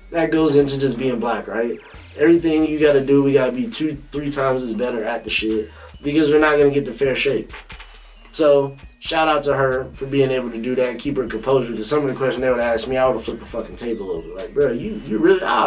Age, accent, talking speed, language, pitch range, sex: 20-39, American, 255 wpm, English, 125-145 Hz, male